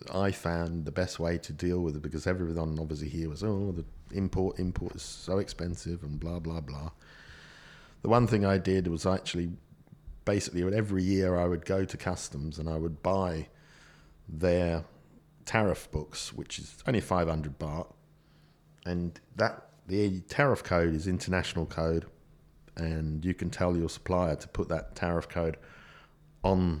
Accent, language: British, English